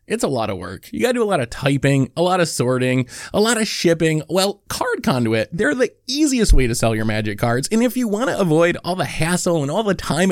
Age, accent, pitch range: 20-39, American, 125-205 Hz